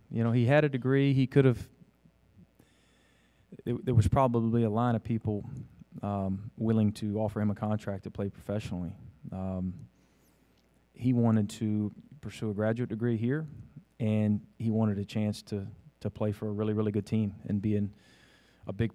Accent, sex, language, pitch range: American, male, English, 100-120 Hz